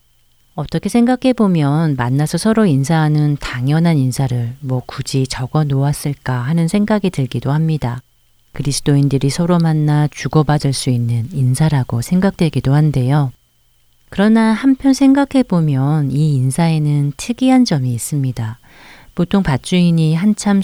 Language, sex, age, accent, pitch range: Korean, female, 40-59, native, 125-170 Hz